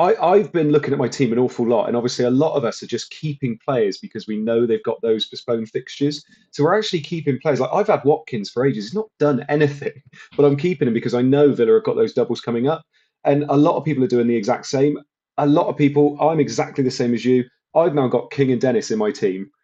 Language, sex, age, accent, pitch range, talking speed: English, male, 30-49, British, 120-150 Hz, 260 wpm